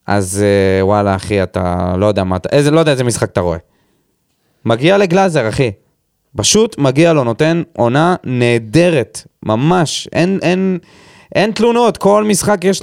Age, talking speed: 20-39, 140 wpm